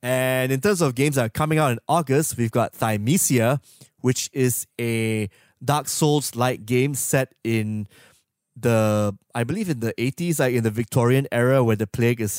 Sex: male